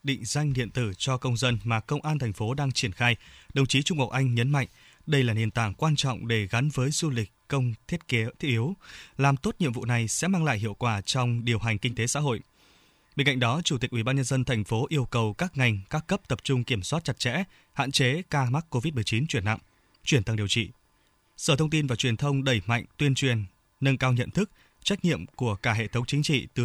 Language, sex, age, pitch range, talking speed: Vietnamese, male, 20-39, 115-145 Hz, 255 wpm